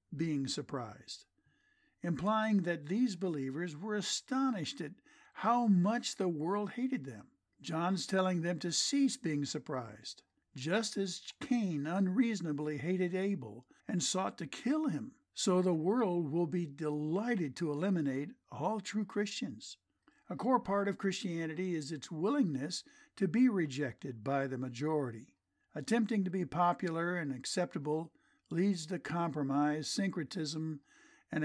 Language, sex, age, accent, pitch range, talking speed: English, male, 60-79, American, 150-200 Hz, 130 wpm